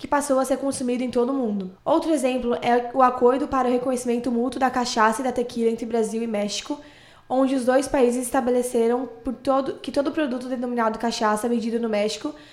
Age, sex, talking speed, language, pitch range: 10-29, female, 200 wpm, Portuguese, 240-275 Hz